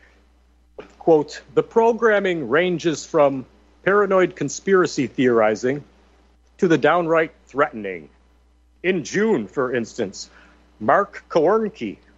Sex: male